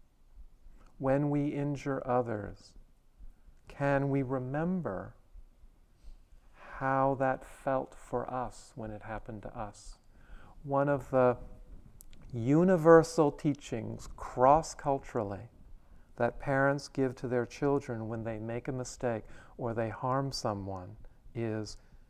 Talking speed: 105 wpm